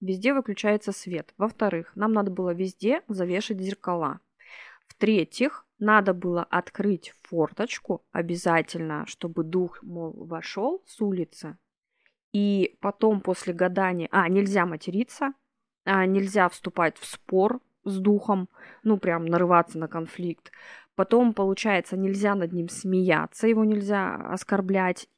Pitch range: 175-220 Hz